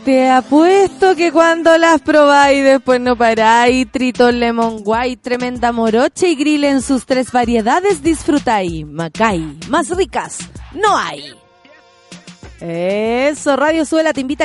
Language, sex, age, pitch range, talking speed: Spanish, female, 20-39, 235-320 Hz, 130 wpm